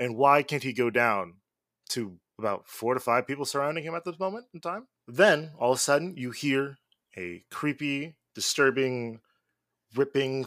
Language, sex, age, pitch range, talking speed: English, male, 20-39, 120-150 Hz, 170 wpm